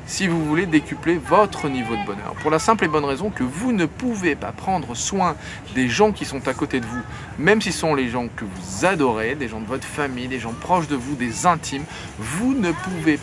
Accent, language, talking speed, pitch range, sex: French, French, 235 wpm, 135-180 Hz, male